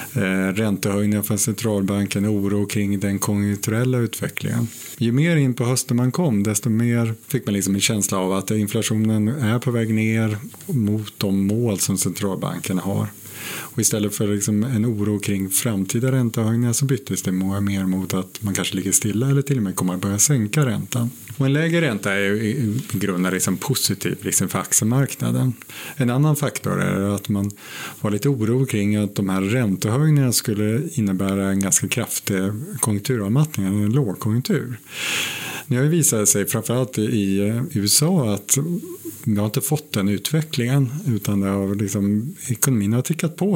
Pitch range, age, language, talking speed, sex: 100-130 Hz, 30-49, Swedish, 170 wpm, male